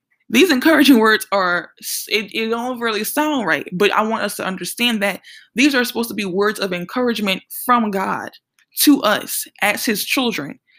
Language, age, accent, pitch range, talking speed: English, 20-39, American, 195-240 Hz, 180 wpm